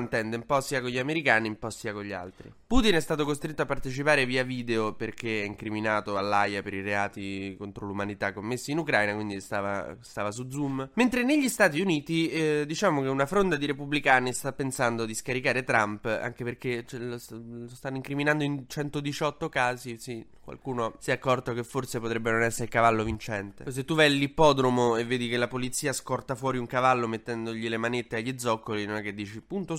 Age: 10-29